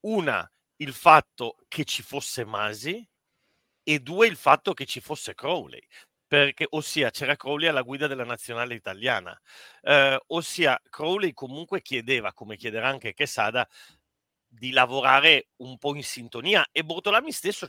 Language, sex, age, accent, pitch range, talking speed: Italian, male, 40-59, native, 125-160 Hz, 145 wpm